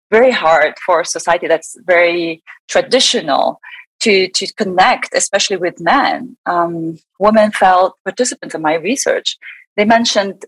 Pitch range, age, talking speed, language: 170-230 Hz, 30-49, 130 wpm, English